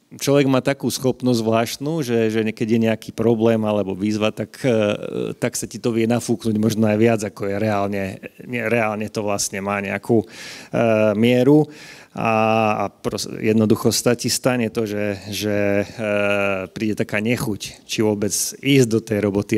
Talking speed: 160 wpm